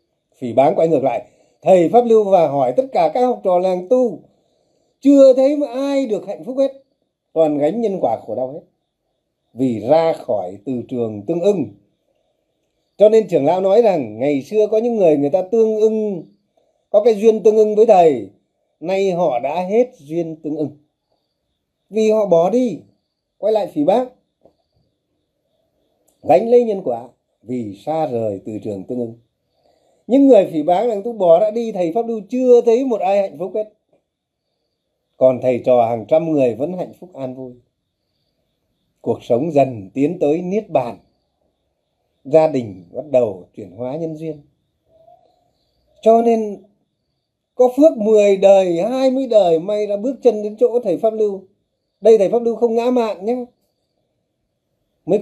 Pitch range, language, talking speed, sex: 150-235 Hz, Vietnamese, 170 wpm, male